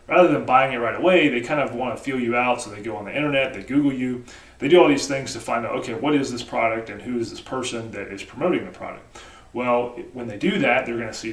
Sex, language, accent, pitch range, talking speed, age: male, English, American, 105-125 Hz, 285 wpm, 30-49